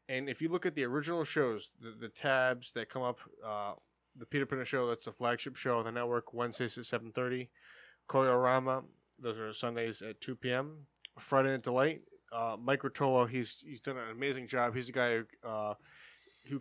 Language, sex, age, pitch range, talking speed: English, male, 20-39, 120-145 Hz, 185 wpm